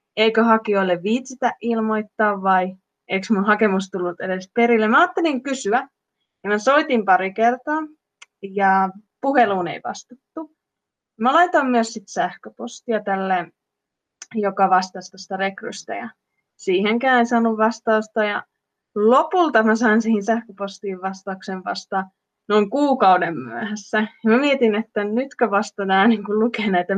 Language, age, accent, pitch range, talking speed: Finnish, 20-39, native, 195-235 Hz, 120 wpm